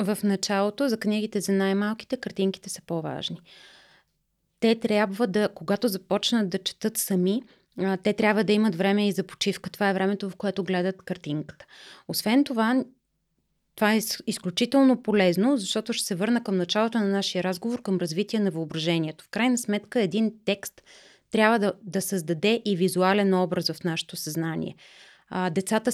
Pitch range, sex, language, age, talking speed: 185-215 Hz, female, Bulgarian, 30-49, 155 wpm